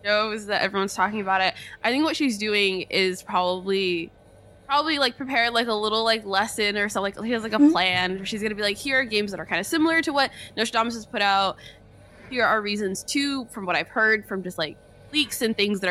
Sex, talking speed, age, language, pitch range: female, 240 wpm, 20-39, English, 185-245 Hz